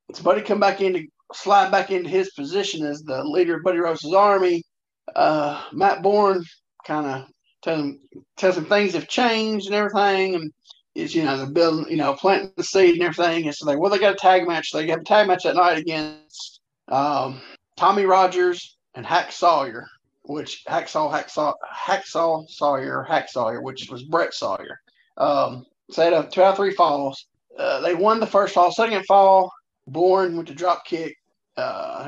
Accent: American